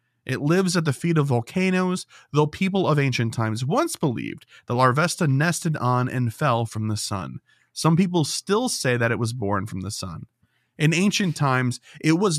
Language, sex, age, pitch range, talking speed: English, male, 30-49, 120-170 Hz, 190 wpm